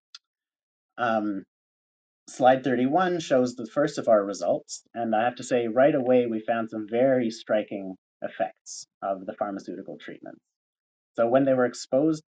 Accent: American